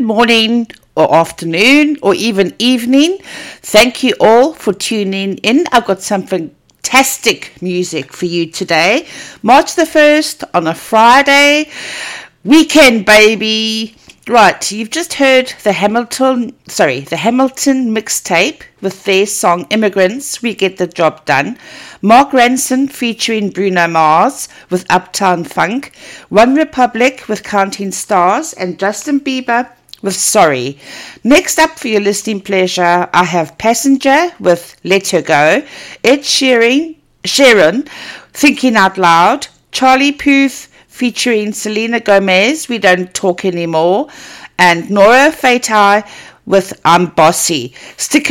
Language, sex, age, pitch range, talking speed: English, female, 60-79, 185-265 Hz, 125 wpm